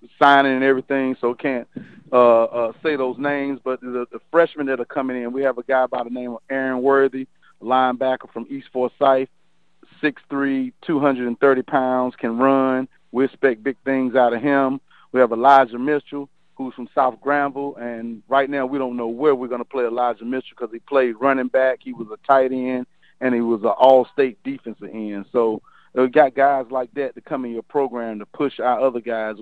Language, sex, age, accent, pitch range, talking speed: English, male, 40-59, American, 120-135 Hz, 200 wpm